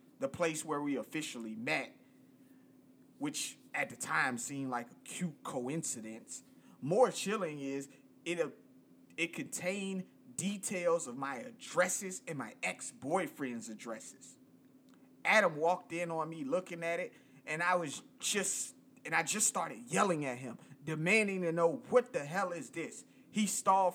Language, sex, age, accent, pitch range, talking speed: English, male, 30-49, American, 155-220 Hz, 150 wpm